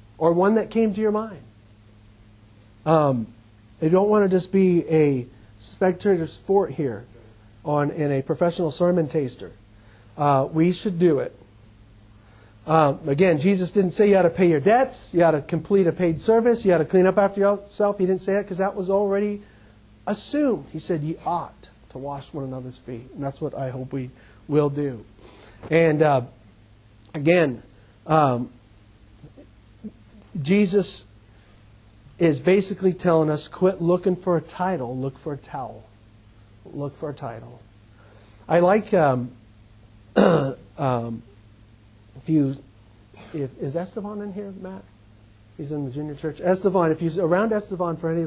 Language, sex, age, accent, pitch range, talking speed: English, male, 40-59, American, 110-180 Hz, 160 wpm